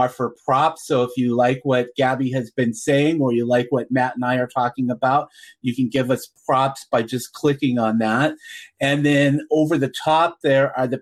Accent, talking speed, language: American, 210 wpm, English